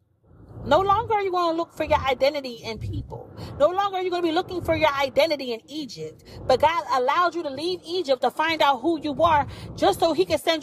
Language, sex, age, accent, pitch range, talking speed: English, female, 30-49, American, 260-370 Hz, 245 wpm